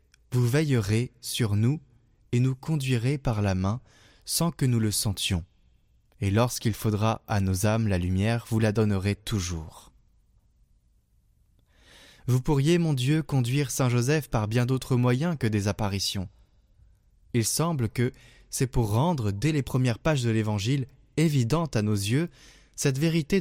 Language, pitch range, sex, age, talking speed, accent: French, 110-145 Hz, male, 20-39, 150 wpm, French